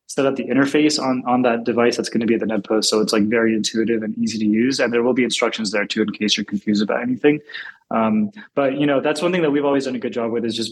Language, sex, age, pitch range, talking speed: English, male, 20-39, 110-130 Hz, 310 wpm